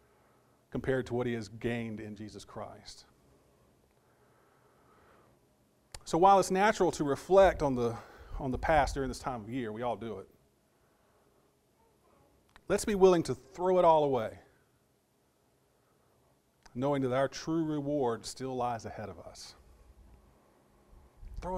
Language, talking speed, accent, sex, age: English, 135 wpm, American, male, 40-59